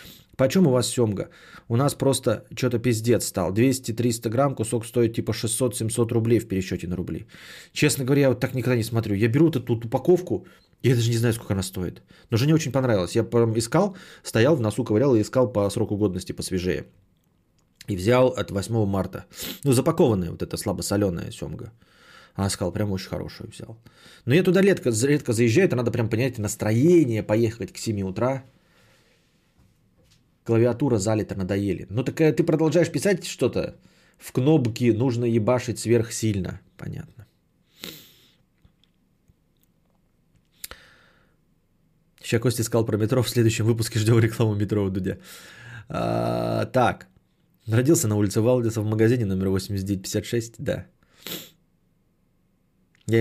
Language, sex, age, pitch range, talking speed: Bulgarian, male, 30-49, 105-130 Hz, 150 wpm